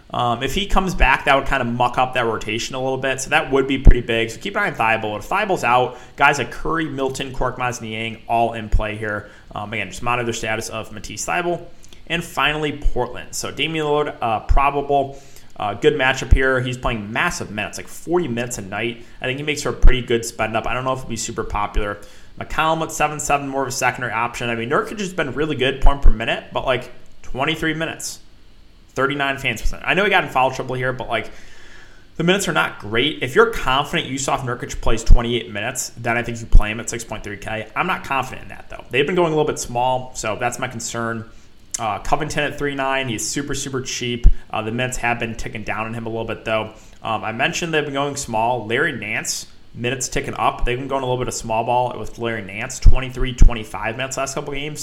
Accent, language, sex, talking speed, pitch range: American, English, male, 230 wpm, 115-145 Hz